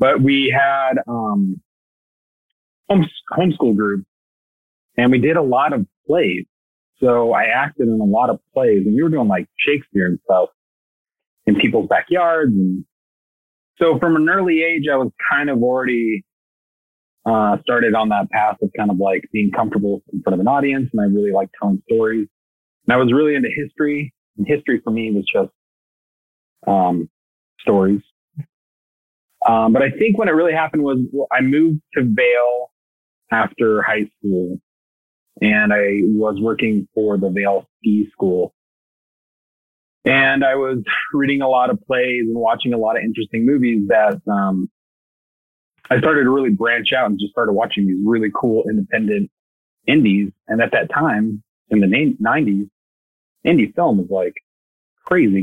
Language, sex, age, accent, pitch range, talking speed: English, male, 30-49, American, 100-135 Hz, 160 wpm